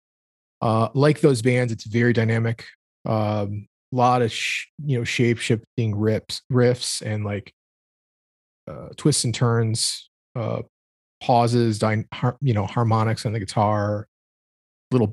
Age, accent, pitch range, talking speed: 30-49, American, 110-125 Hz, 115 wpm